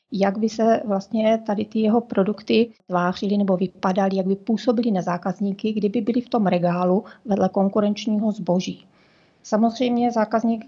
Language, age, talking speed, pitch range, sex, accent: Czech, 30-49, 140 wpm, 195-225 Hz, female, native